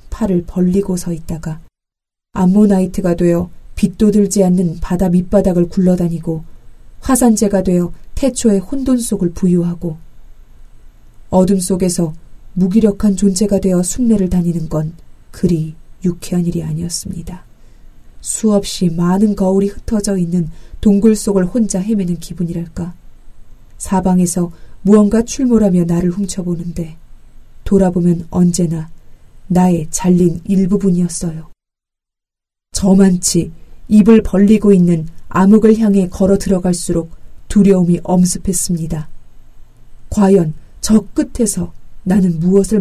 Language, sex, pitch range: Korean, female, 170-195 Hz